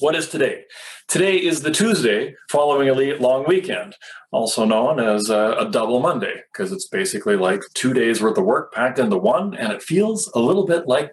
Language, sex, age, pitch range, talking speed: English, male, 30-49, 120-190 Hz, 200 wpm